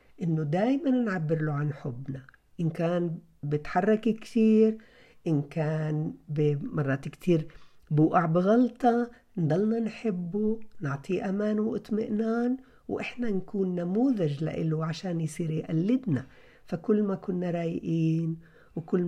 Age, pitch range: 50-69, 155-220 Hz